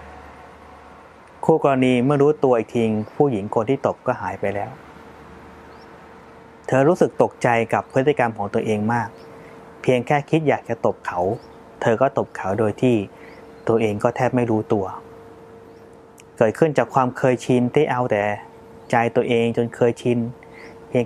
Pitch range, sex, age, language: 115-135 Hz, male, 20-39, Thai